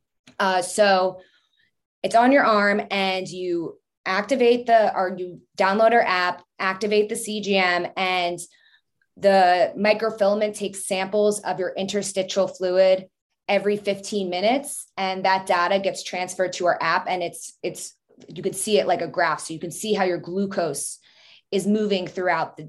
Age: 20-39